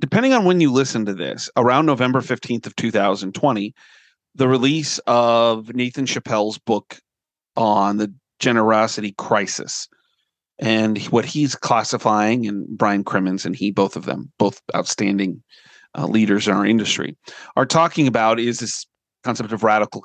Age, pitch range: 40-59, 110-140 Hz